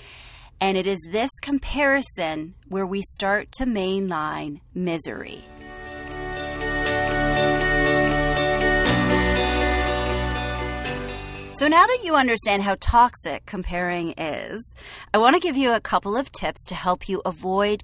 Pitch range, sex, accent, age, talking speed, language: 170-235 Hz, female, American, 30-49, 110 wpm, English